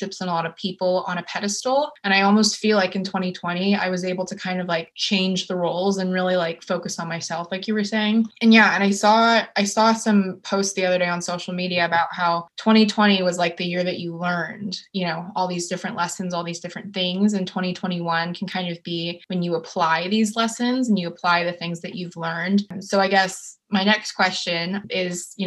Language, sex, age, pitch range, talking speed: English, female, 20-39, 175-195 Hz, 230 wpm